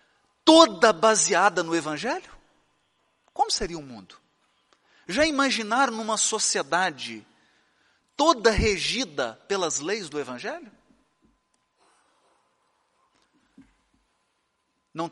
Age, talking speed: 40-59, 75 wpm